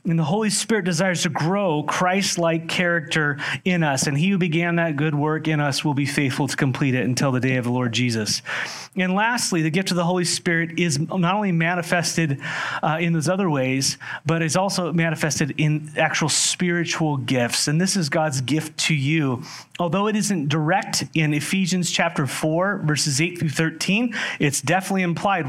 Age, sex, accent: 30-49, male, American